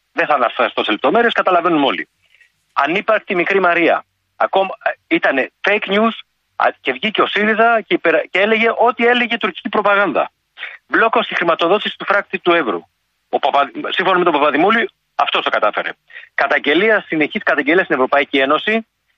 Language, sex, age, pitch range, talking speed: Greek, male, 40-59, 170-220 Hz, 145 wpm